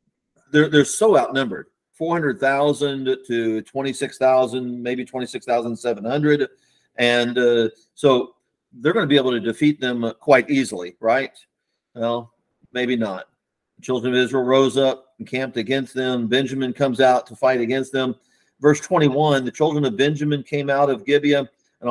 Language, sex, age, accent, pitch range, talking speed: English, male, 40-59, American, 120-150 Hz, 150 wpm